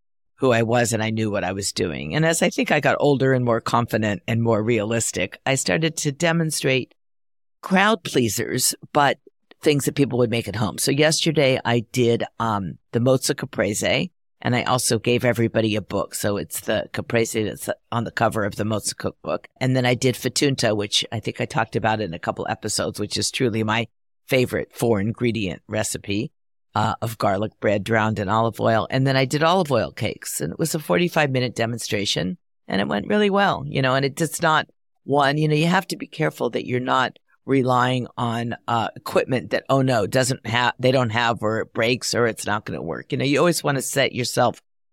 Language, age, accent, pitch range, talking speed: English, 50-69, American, 110-140 Hz, 210 wpm